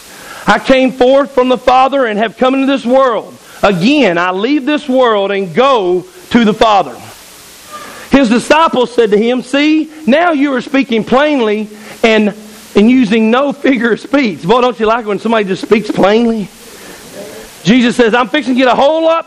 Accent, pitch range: American, 215-285 Hz